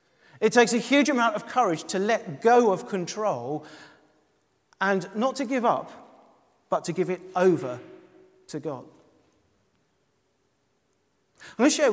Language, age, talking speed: English, 40-59, 140 wpm